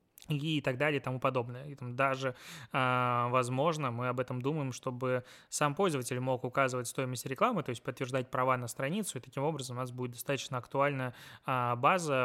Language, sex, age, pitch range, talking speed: Russian, male, 20-39, 125-145 Hz, 170 wpm